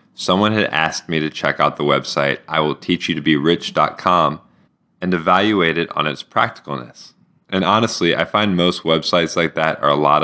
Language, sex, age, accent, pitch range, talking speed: English, male, 10-29, American, 80-95 Hz, 160 wpm